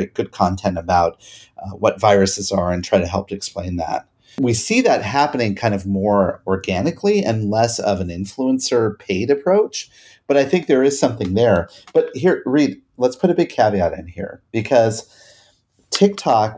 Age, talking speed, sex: 30-49, 175 wpm, male